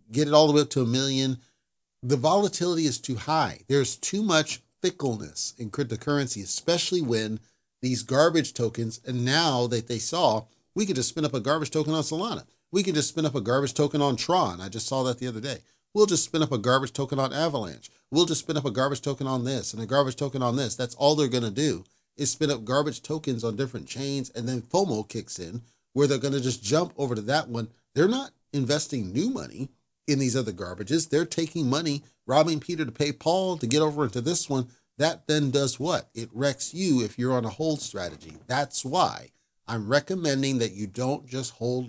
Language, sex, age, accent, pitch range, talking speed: English, male, 40-59, American, 120-150 Hz, 220 wpm